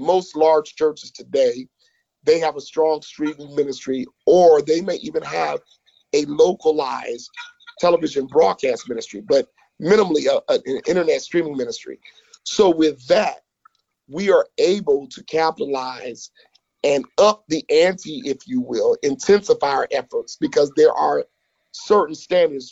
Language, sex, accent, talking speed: English, male, American, 130 wpm